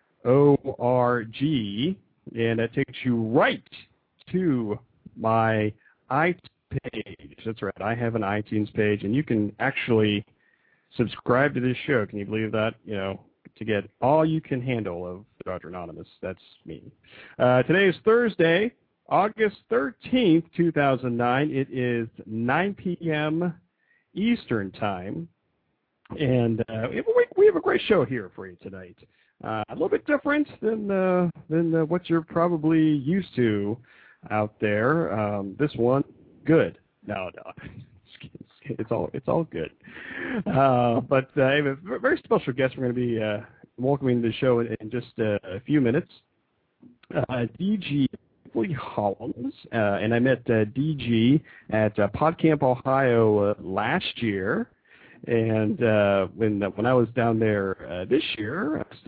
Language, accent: English, American